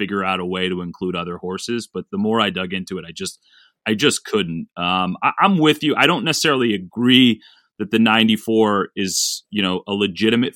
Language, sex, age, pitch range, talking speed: English, male, 30-49, 90-110 Hz, 210 wpm